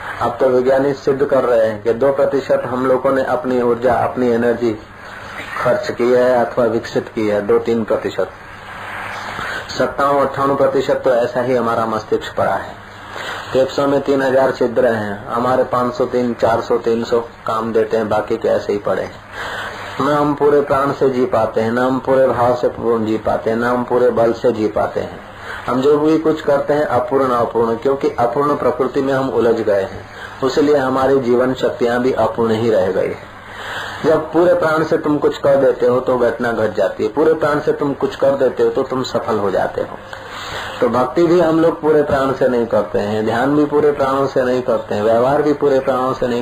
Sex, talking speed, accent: male, 150 wpm, native